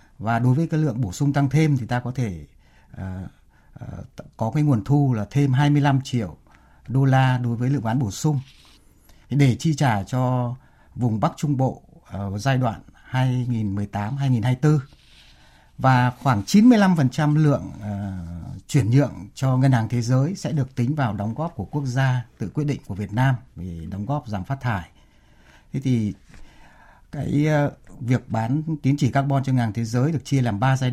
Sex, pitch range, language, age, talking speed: male, 100-135 Hz, Vietnamese, 60-79, 180 wpm